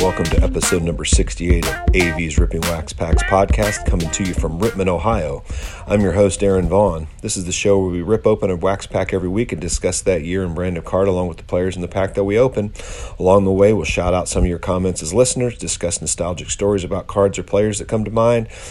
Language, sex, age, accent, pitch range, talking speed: English, male, 40-59, American, 85-100 Hz, 245 wpm